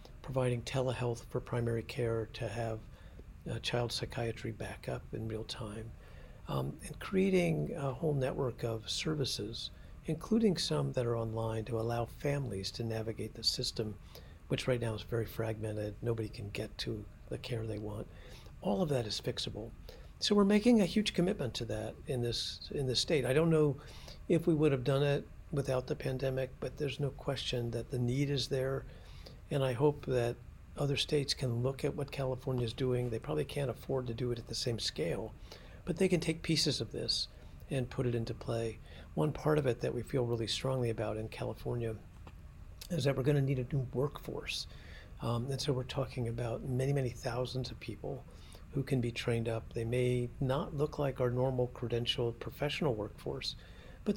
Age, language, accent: 50-69, English, American